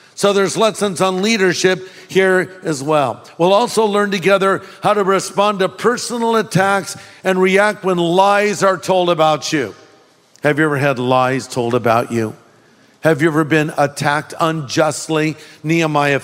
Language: English